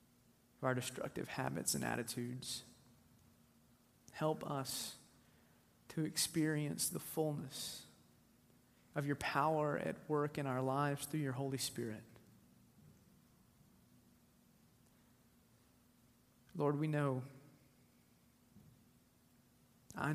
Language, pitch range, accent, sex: English, 125-145 Hz, American, male